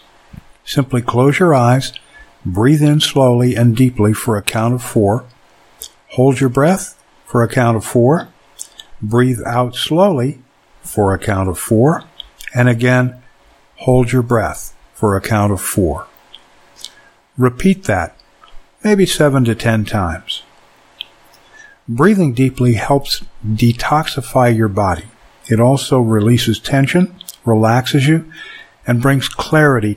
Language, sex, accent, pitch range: English, male, American, 110-140 Hz